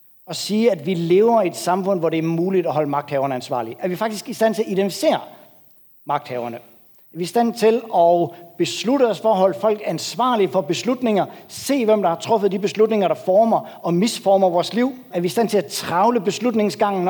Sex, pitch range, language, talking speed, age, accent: male, 175-225 Hz, Danish, 215 wpm, 60-79, native